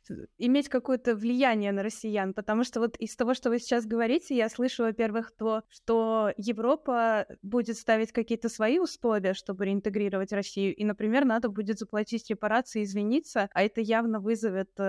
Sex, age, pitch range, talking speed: female, 20-39, 195-225 Hz, 155 wpm